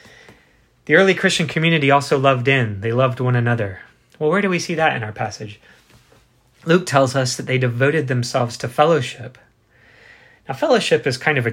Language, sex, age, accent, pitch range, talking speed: English, male, 20-39, American, 120-145 Hz, 180 wpm